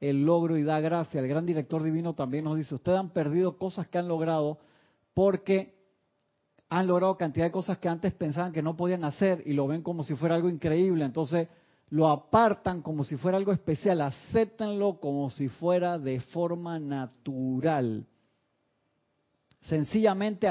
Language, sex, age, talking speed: Spanish, male, 40-59, 165 wpm